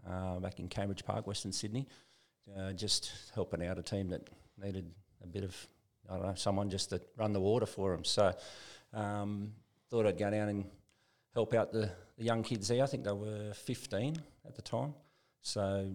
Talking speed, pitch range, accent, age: 190 wpm, 100-115 Hz, Australian, 40-59